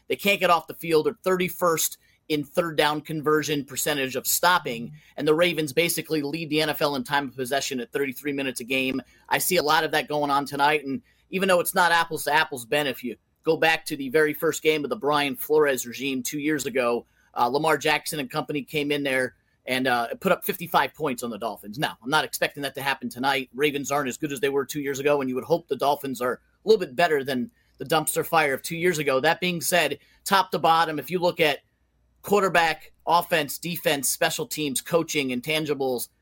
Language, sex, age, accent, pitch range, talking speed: English, male, 30-49, American, 135-165 Hz, 230 wpm